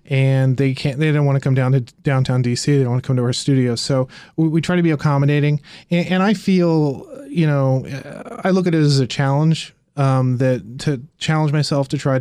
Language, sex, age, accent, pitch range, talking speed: English, male, 30-49, American, 130-155 Hz, 230 wpm